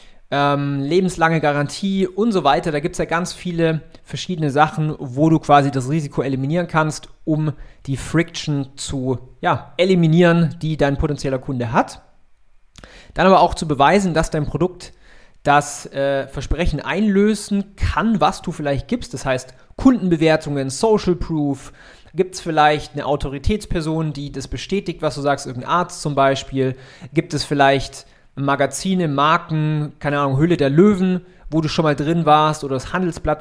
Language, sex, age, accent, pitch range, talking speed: German, male, 30-49, German, 140-170 Hz, 155 wpm